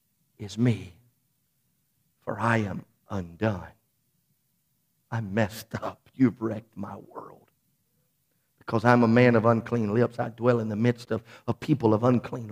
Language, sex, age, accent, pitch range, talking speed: English, male, 50-69, American, 110-145 Hz, 145 wpm